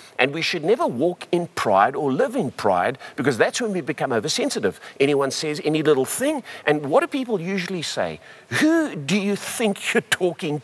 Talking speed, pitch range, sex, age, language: 190 wpm, 130-200 Hz, male, 50-69, English